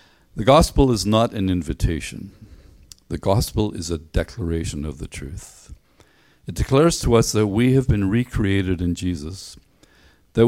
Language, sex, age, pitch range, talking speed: English, male, 50-69, 85-115 Hz, 150 wpm